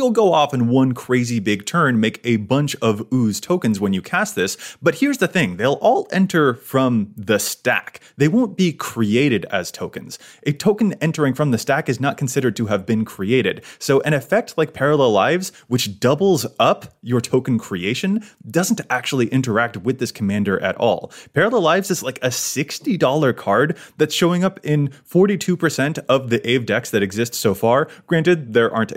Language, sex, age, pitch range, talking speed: English, male, 20-39, 120-165 Hz, 185 wpm